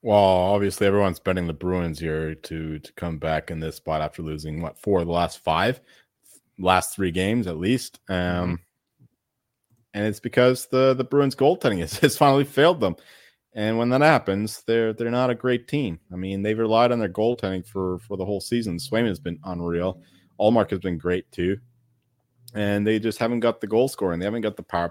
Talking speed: 200 wpm